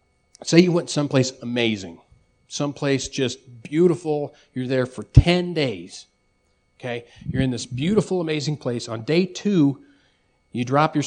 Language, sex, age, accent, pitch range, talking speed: English, male, 40-59, American, 120-160 Hz, 140 wpm